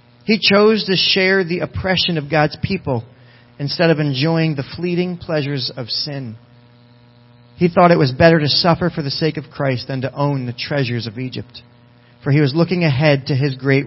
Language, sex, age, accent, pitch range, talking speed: English, male, 40-59, American, 120-165 Hz, 190 wpm